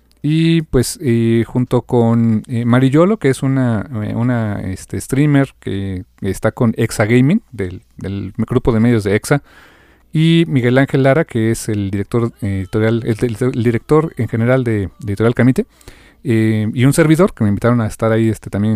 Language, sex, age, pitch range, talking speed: Spanish, male, 40-59, 110-140 Hz, 180 wpm